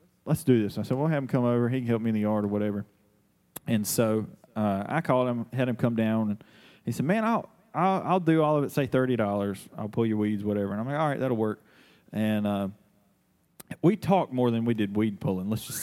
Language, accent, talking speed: English, American, 255 wpm